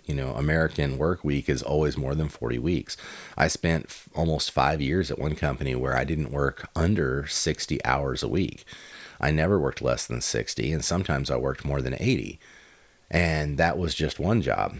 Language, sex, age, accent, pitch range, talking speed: English, male, 30-49, American, 70-85 Hz, 195 wpm